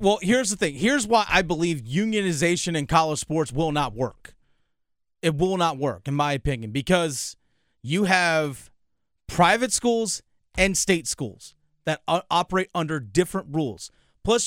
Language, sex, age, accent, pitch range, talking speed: English, male, 30-49, American, 160-205 Hz, 150 wpm